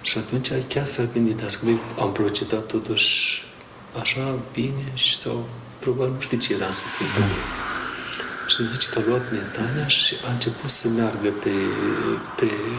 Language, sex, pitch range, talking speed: Romanian, male, 110-125 Hz, 155 wpm